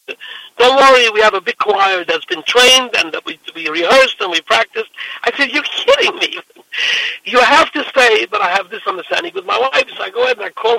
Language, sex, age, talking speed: English, male, 60-79, 235 wpm